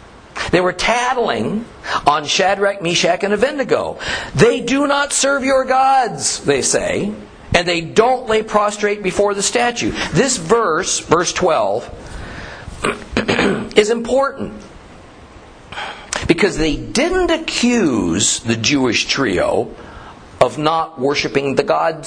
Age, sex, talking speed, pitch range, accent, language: 50-69, male, 115 wpm, 140-220 Hz, American, English